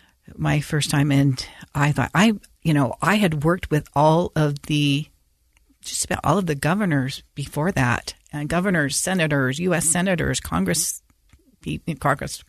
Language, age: English, 50-69